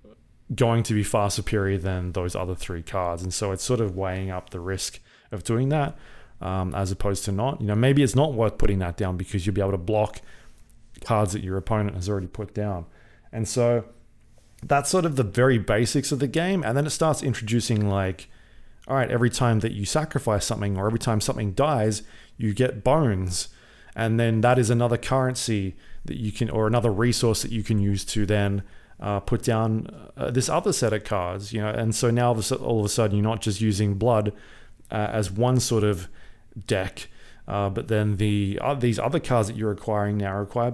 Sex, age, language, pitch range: male, 20-39, English, 100-120 Hz